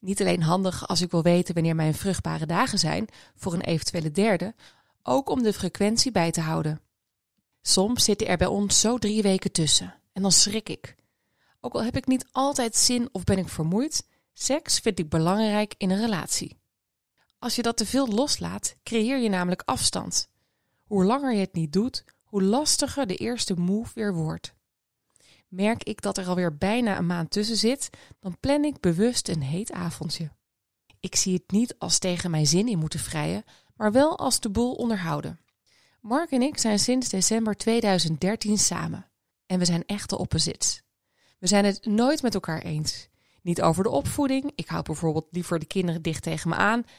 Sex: female